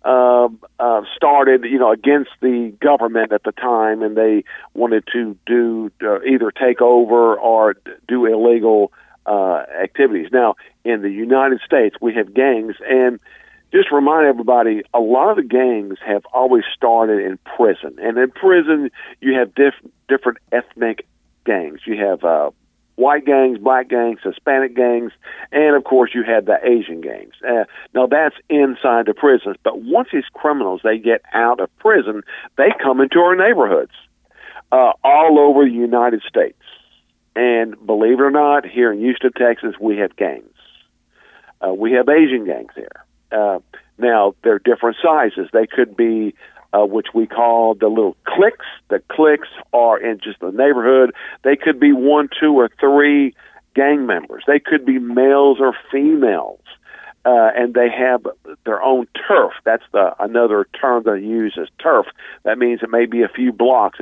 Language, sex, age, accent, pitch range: Chinese, male, 50-69, American, 115-135 Hz